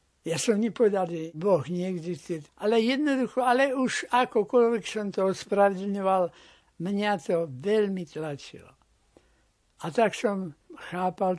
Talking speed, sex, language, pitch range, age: 120 wpm, male, Slovak, 165-205 Hz, 60-79